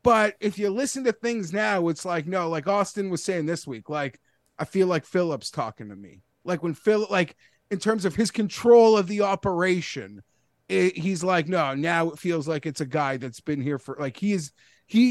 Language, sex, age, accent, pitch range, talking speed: English, male, 30-49, American, 165-220 Hz, 220 wpm